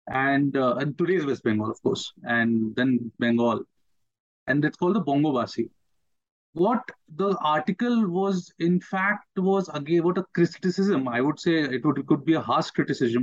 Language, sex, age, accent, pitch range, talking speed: English, male, 30-49, Indian, 140-180 Hz, 170 wpm